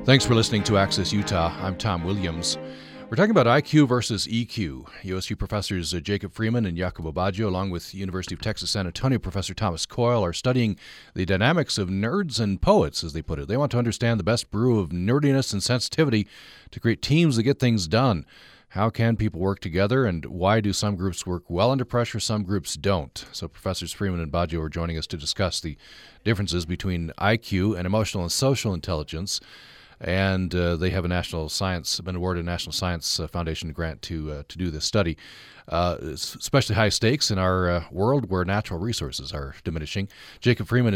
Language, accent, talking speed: English, American, 195 wpm